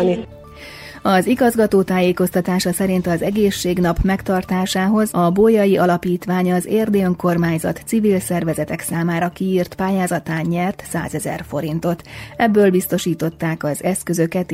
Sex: female